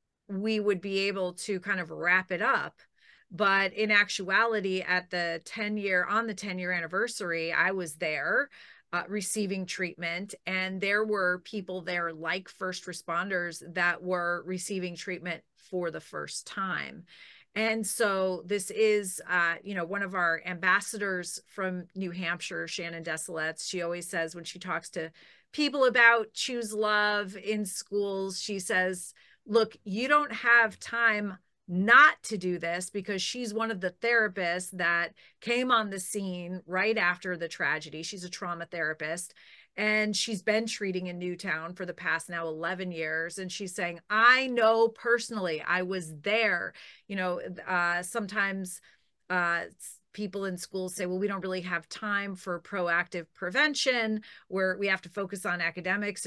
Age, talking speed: 40-59, 160 wpm